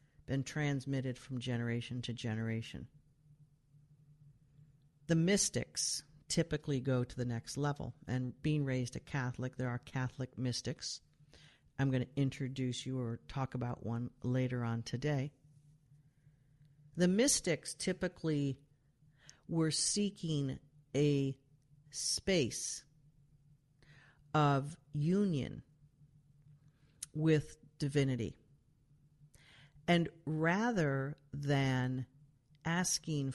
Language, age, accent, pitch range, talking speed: English, 50-69, American, 135-150 Hz, 90 wpm